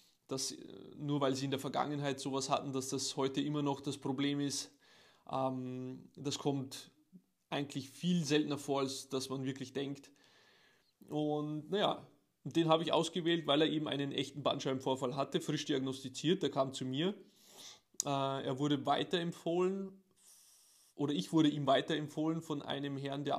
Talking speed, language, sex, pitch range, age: 155 wpm, German, male, 135-150 Hz, 20-39